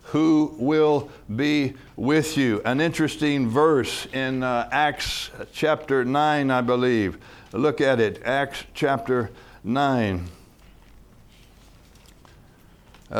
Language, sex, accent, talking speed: English, male, American, 95 wpm